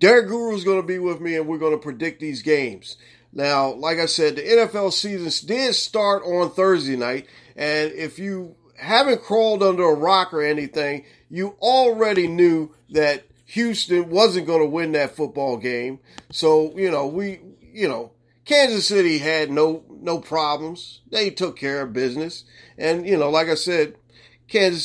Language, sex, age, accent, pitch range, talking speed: English, male, 40-59, American, 140-190 Hz, 175 wpm